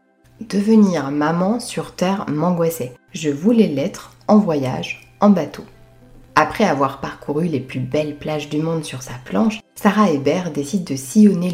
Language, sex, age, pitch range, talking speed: French, female, 20-39, 145-205 Hz, 150 wpm